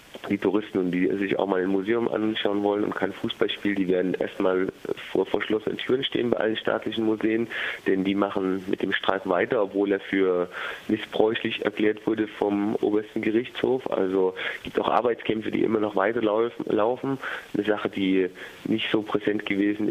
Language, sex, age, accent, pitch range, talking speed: German, male, 30-49, German, 95-110 Hz, 170 wpm